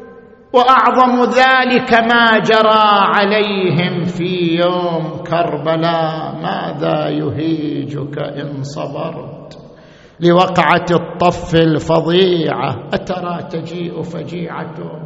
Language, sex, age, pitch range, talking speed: Arabic, male, 50-69, 170-215 Hz, 70 wpm